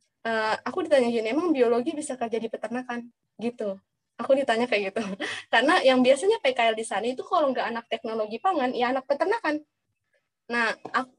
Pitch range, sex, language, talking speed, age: 215-280 Hz, female, Indonesian, 165 wpm, 20-39